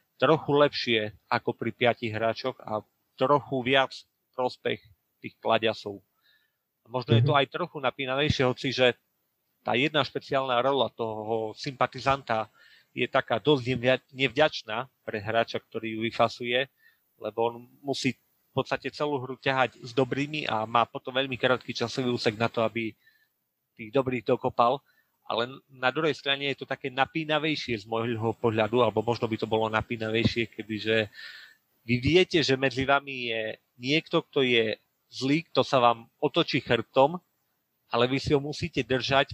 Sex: male